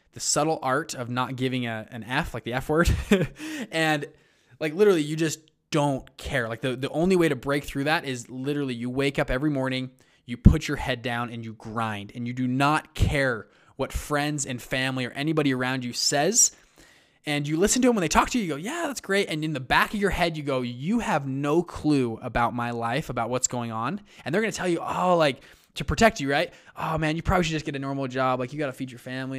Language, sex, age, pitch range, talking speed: English, male, 20-39, 125-165 Hz, 245 wpm